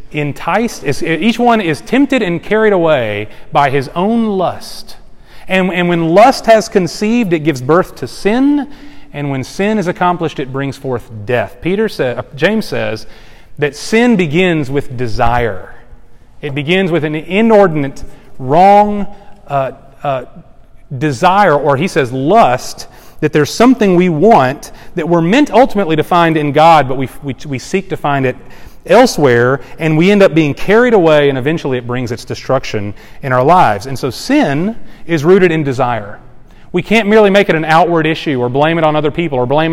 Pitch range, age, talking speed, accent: 135-185 Hz, 30-49, 175 wpm, American